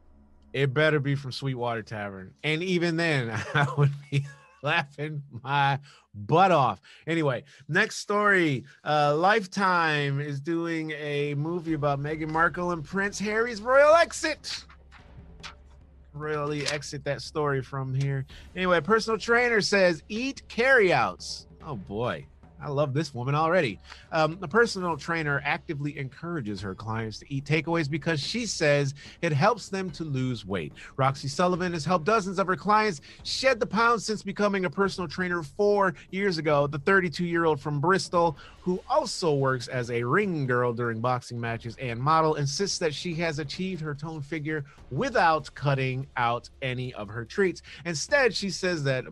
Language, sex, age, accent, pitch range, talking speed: English, male, 30-49, American, 130-180 Hz, 155 wpm